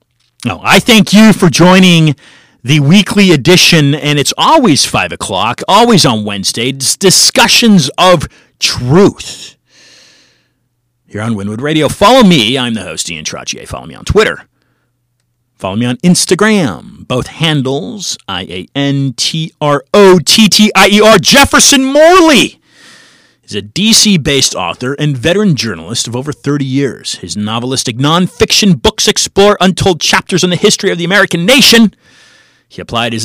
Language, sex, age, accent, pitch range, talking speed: English, male, 40-59, American, 130-195 Hz, 150 wpm